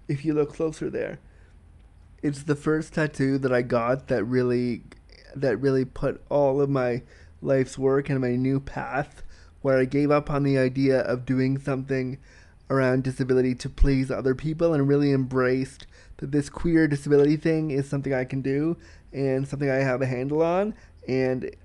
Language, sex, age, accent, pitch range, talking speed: English, male, 20-39, American, 130-150 Hz, 175 wpm